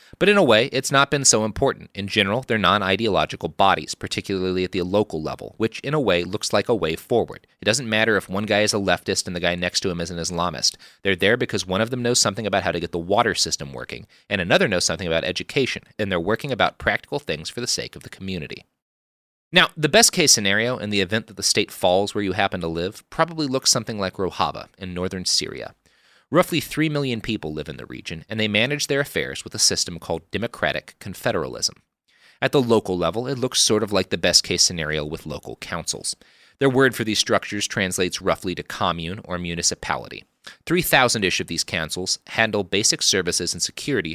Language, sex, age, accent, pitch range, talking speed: English, male, 30-49, American, 90-115 Hz, 215 wpm